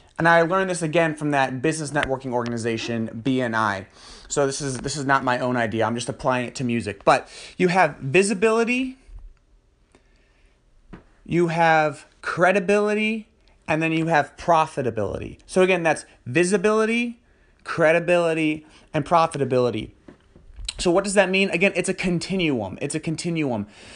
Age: 30-49